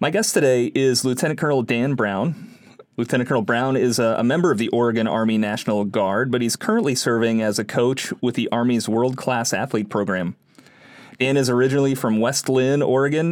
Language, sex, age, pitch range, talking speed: English, male, 30-49, 115-135 Hz, 185 wpm